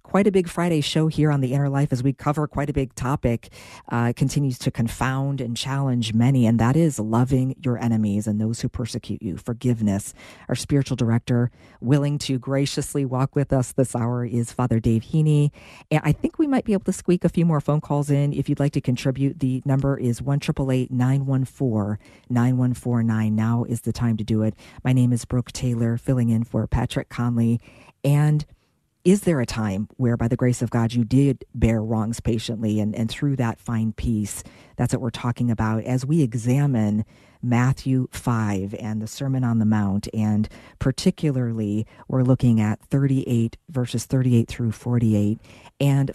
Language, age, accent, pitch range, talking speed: English, 40-59, American, 115-140 Hz, 180 wpm